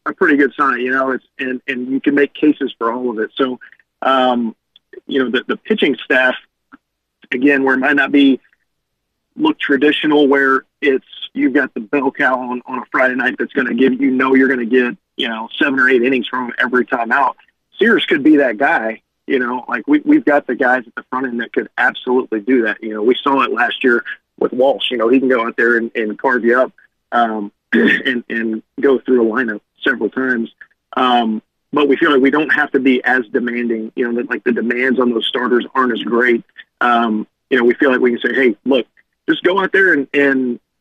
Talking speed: 230 wpm